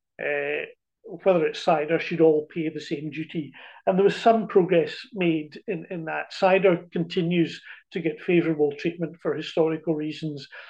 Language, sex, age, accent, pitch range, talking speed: English, male, 50-69, British, 160-180 Hz, 155 wpm